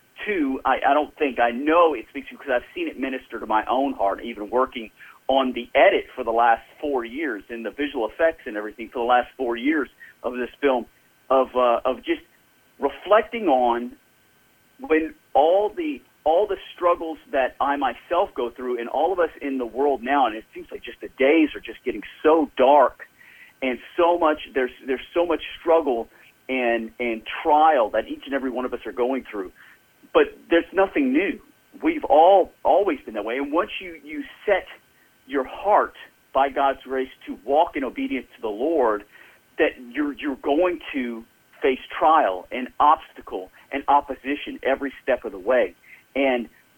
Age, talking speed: 40-59, 185 wpm